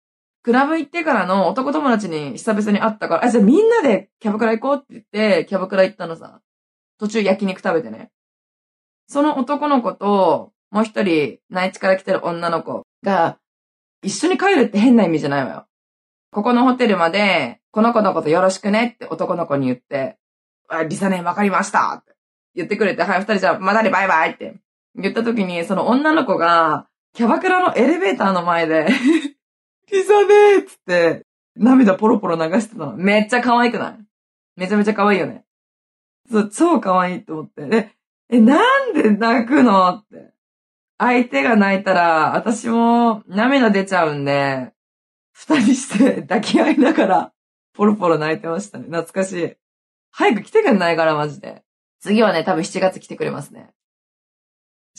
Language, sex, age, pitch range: Japanese, female, 20-39, 180-250 Hz